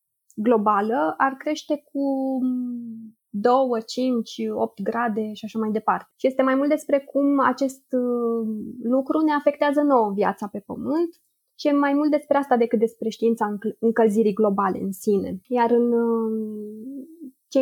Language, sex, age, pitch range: Romanian, female, 20-39, 210-260 Hz